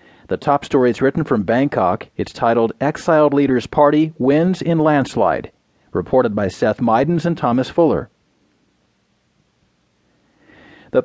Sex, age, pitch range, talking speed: male, 40-59, 120-155 Hz, 125 wpm